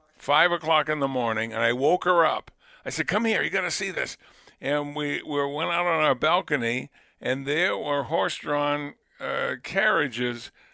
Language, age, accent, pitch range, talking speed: English, 60-79, American, 130-155 Hz, 180 wpm